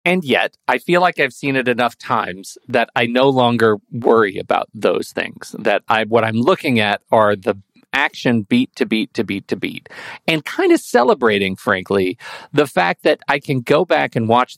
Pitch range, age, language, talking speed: 120-165 Hz, 40-59, English, 200 wpm